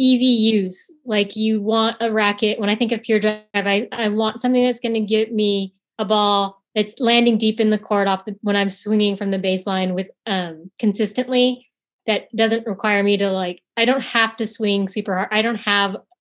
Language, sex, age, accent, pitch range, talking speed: English, female, 20-39, American, 195-230 Hz, 210 wpm